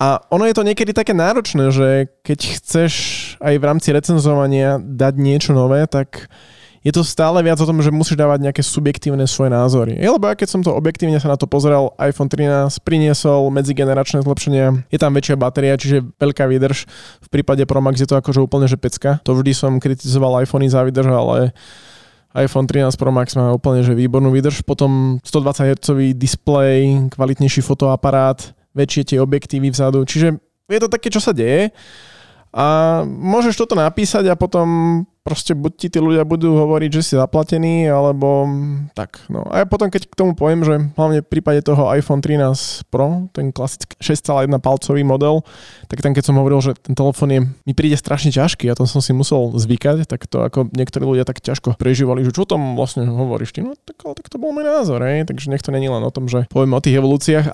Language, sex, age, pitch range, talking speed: Slovak, male, 20-39, 135-155 Hz, 195 wpm